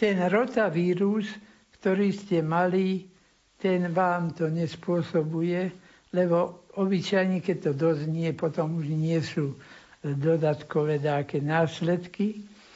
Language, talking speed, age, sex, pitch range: Slovak, 100 wpm, 60-79, male, 165-210 Hz